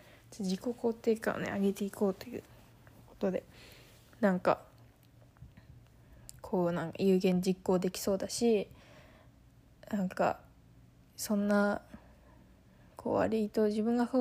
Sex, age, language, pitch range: female, 20-39, Japanese, 195-220 Hz